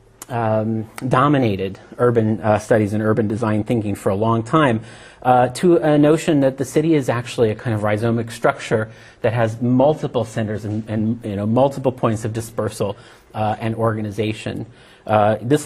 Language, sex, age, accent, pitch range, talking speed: English, male, 40-59, American, 105-125 Hz, 170 wpm